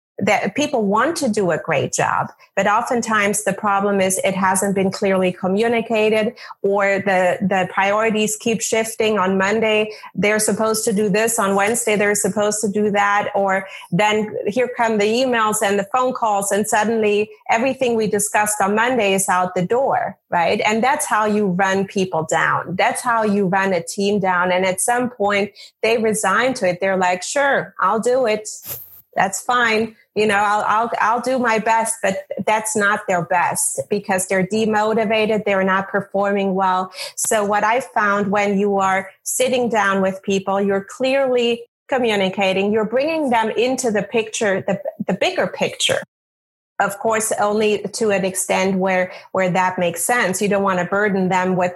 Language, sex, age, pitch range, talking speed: English, female, 30-49, 190-220 Hz, 175 wpm